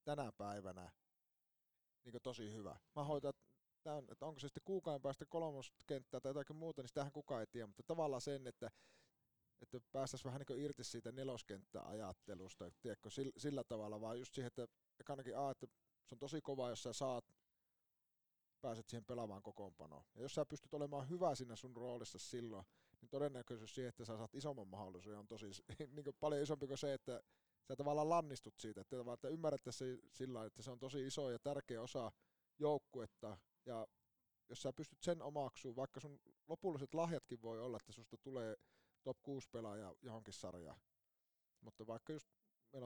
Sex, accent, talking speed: male, native, 170 wpm